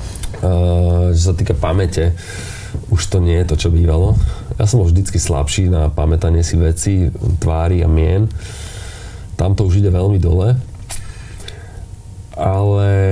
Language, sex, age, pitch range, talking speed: Slovak, male, 30-49, 85-95 Hz, 140 wpm